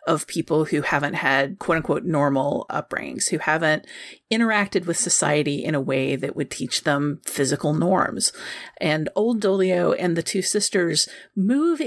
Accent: American